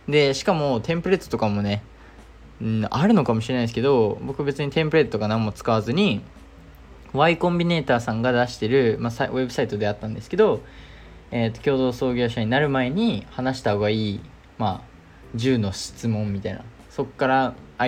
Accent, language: native, Japanese